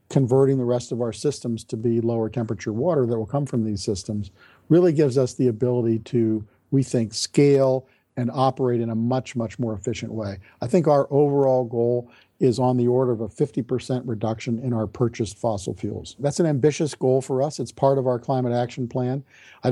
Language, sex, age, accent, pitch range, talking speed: English, male, 50-69, American, 115-135 Hz, 205 wpm